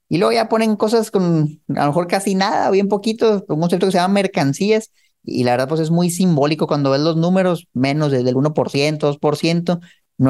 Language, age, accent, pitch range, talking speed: Spanish, 30-49, Mexican, 145-185 Hz, 205 wpm